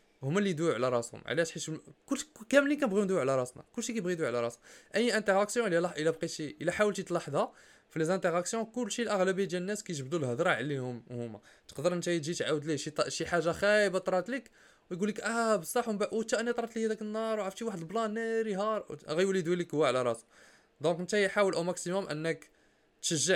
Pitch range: 140-195 Hz